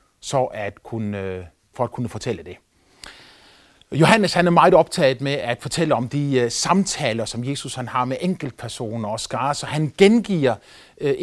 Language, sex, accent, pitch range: Danish, male, native, 125-170 Hz